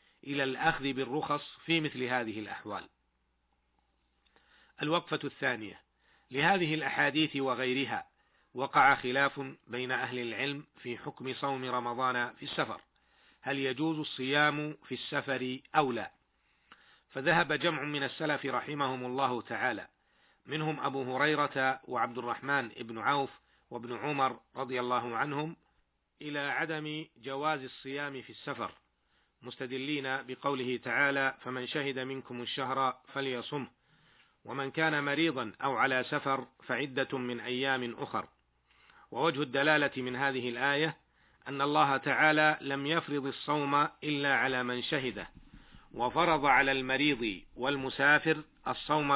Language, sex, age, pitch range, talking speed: Arabic, male, 40-59, 125-145 Hz, 115 wpm